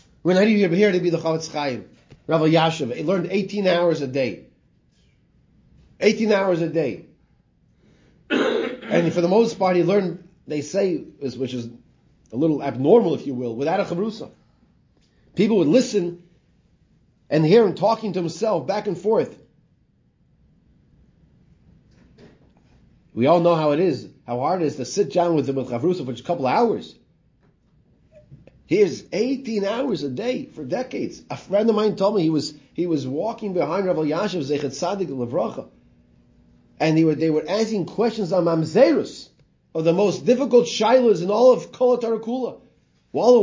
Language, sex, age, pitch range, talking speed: English, male, 30-49, 155-215 Hz, 160 wpm